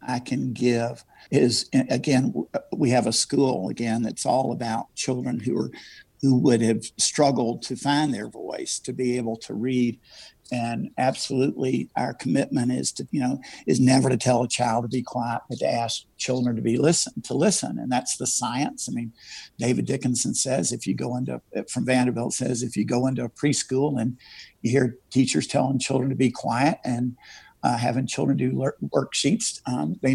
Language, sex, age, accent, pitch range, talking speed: English, male, 50-69, American, 115-130 Hz, 190 wpm